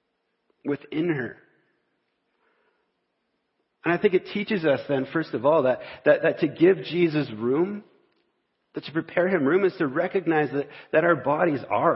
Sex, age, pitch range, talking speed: male, 40-59, 120-165 Hz, 160 wpm